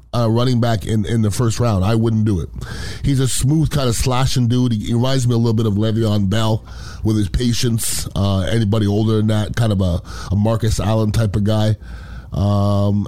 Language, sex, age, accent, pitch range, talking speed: English, male, 30-49, American, 95-120 Hz, 215 wpm